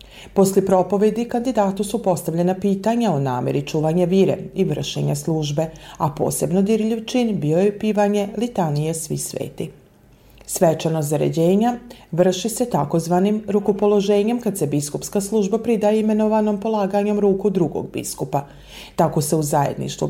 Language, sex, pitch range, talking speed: Croatian, female, 160-210 Hz, 125 wpm